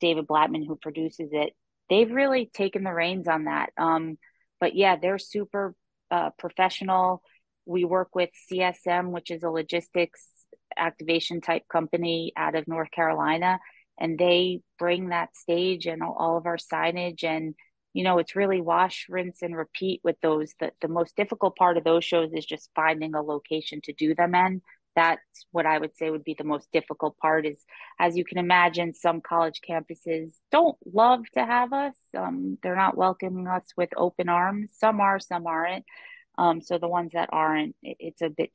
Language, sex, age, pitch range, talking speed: English, female, 30-49, 160-185 Hz, 185 wpm